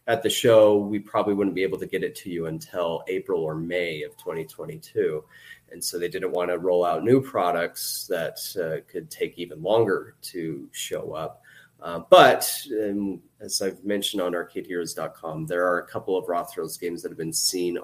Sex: male